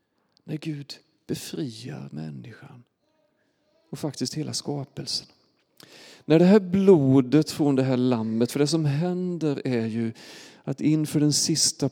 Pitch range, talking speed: 125-145 Hz, 130 wpm